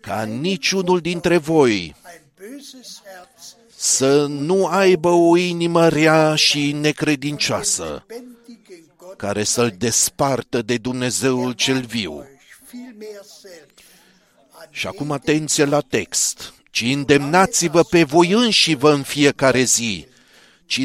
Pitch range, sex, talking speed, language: 145-195 Hz, male, 100 wpm, Romanian